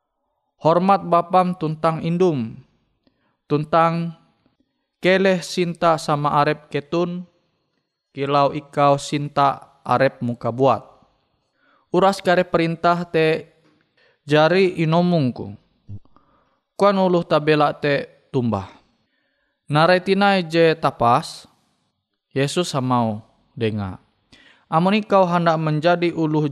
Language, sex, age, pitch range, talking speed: Indonesian, male, 20-39, 135-175 Hz, 85 wpm